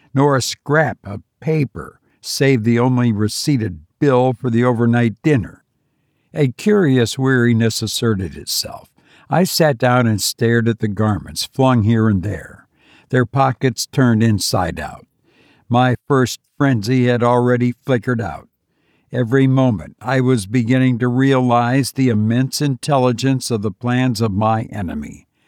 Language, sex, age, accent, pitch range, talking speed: English, male, 60-79, American, 115-135 Hz, 140 wpm